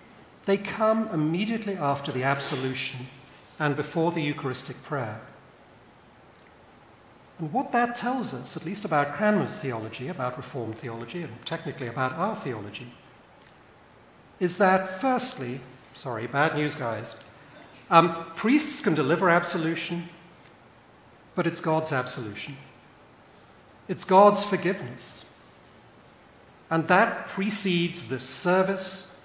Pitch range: 130-190 Hz